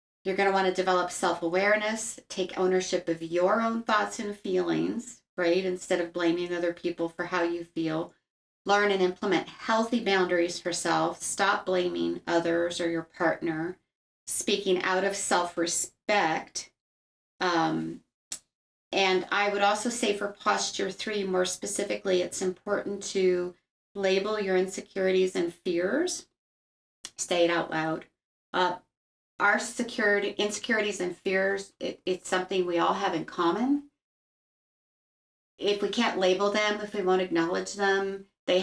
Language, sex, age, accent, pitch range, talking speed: English, female, 40-59, American, 175-205 Hz, 140 wpm